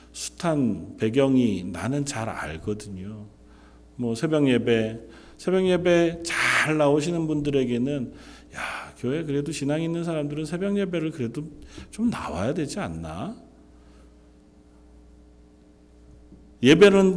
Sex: male